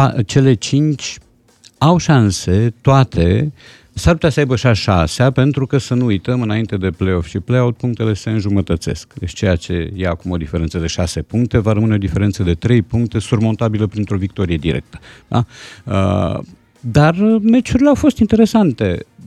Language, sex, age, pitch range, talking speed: Romanian, male, 50-69, 85-120 Hz, 160 wpm